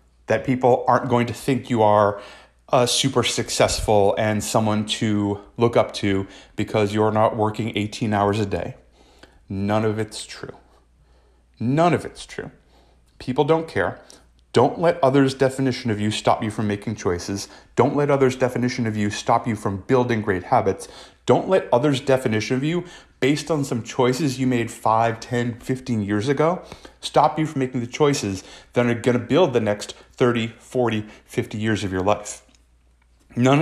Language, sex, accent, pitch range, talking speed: English, male, American, 105-130 Hz, 175 wpm